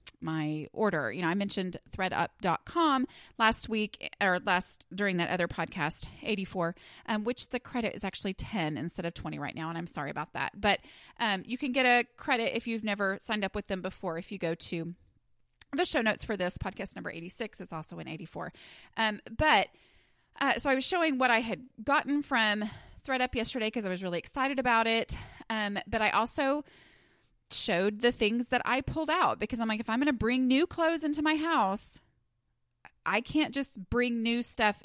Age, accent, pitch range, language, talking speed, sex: 20-39, American, 185-240 Hz, English, 200 wpm, female